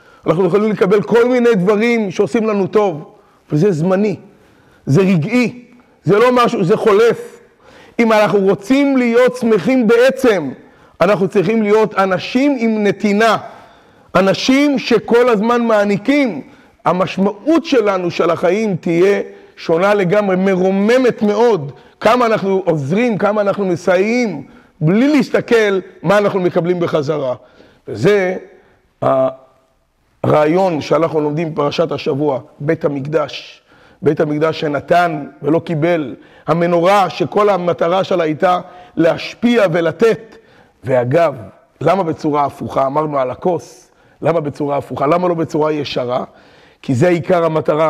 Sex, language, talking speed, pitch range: male, Hebrew, 120 wpm, 155-215 Hz